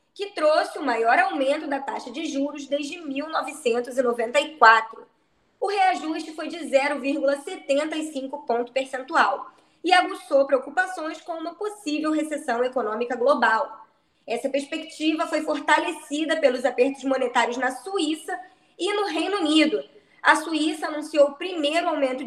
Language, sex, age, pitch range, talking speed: Portuguese, female, 20-39, 270-325 Hz, 125 wpm